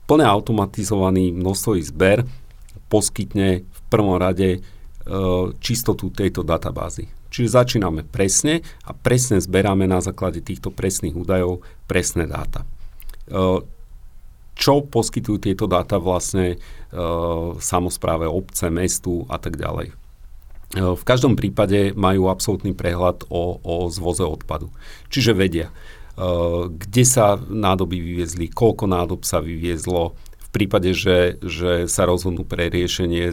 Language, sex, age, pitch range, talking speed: Slovak, male, 50-69, 85-100 Hz, 120 wpm